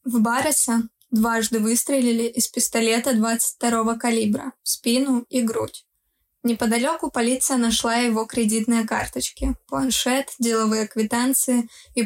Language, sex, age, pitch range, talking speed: Russian, female, 20-39, 225-250 Hz, 110 wpm